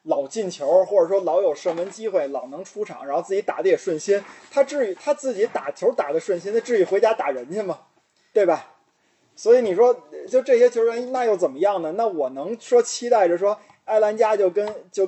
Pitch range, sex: 150-250 Hz, male